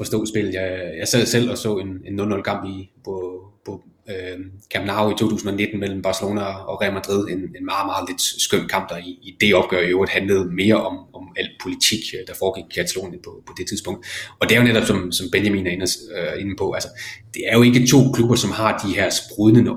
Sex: male